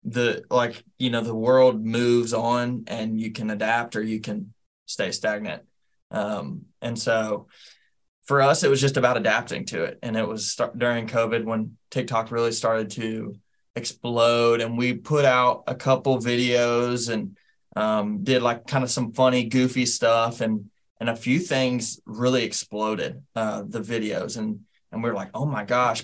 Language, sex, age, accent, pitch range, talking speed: English, male, 20-39, American, 110-125 Hz, 175 wpm